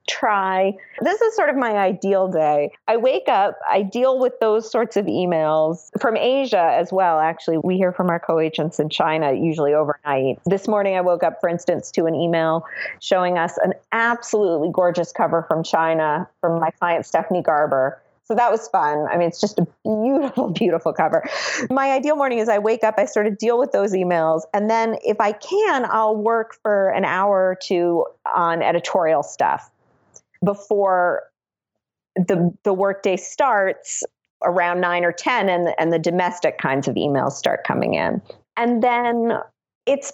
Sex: female